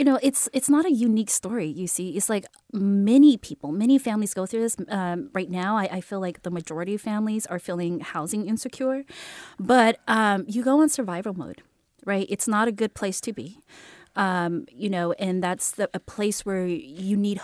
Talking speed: 205 wpm